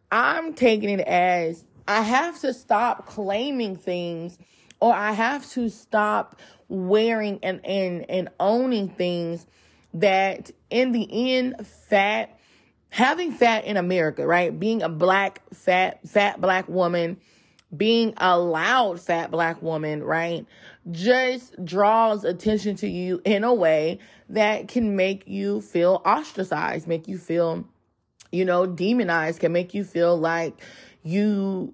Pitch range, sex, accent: 170-215 Hz, female, American